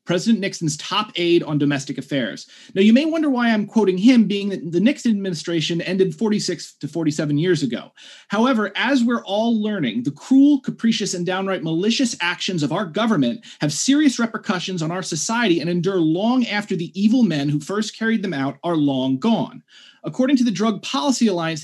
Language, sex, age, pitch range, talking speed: Dutch, male, 30-49, 165-235 Hz, 190 wpm